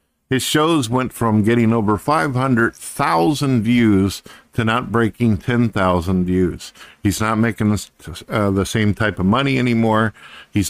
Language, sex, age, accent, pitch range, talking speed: English, male, 50-69, American, 95-115 Hz, 130 wpm